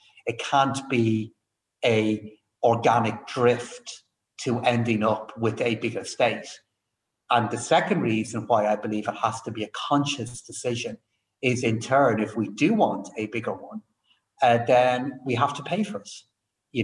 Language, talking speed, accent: English, 165 wpm, British